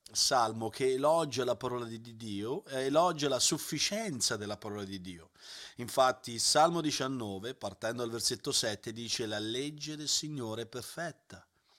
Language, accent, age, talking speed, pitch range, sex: Italian, native, 40-59, 150 wpm, 110-155 Hz, male